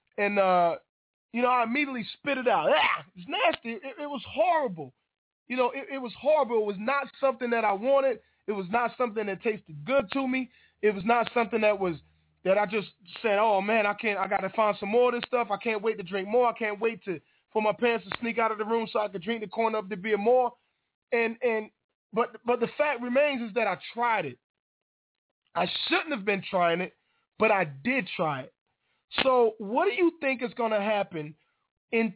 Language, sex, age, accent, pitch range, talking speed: English, male, 20-39, American, 210-260 Hz, 230 wpm